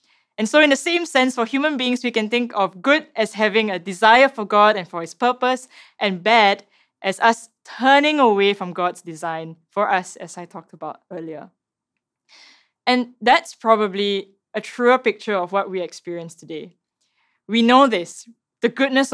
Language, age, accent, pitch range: English, 10-29, Malaysian, 180-235 Hz